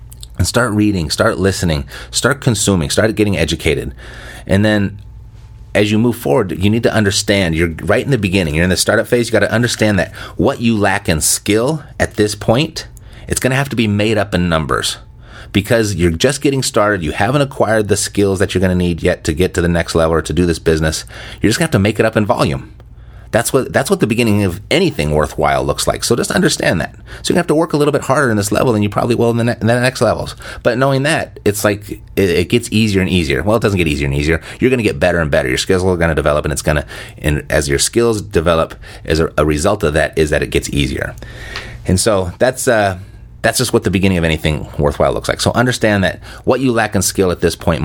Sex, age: male, 30-49